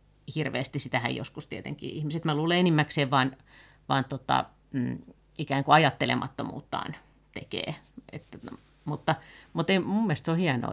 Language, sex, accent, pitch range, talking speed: Finnish, female, native, 130-160 Hz, 130 wpm